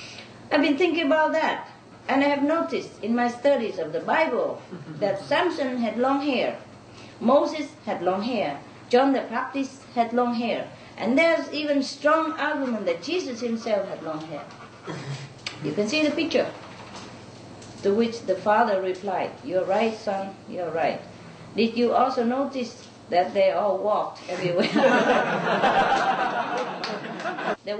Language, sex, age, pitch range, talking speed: English, female, 40-59, 170-250 Hz, 140 wpm